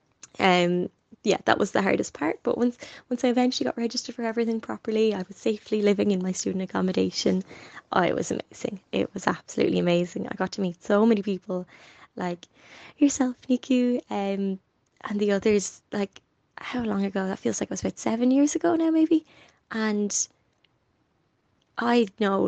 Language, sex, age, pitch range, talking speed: English, female, 20-39, 185-215 Hz, 175 wpm